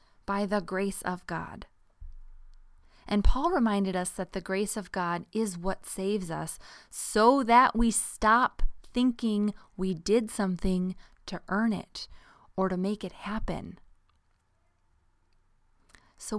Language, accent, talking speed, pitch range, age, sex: English, American, 130 wpm, 150-215 Hz, 20-39, female